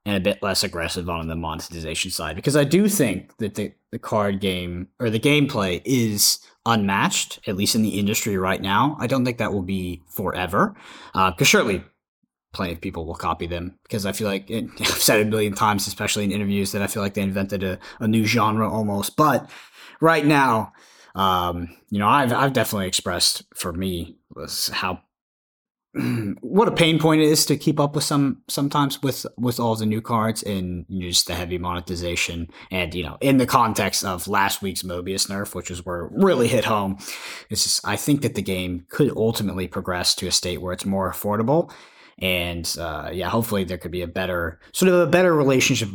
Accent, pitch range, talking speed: American, 90-120 Hz, 200 wpm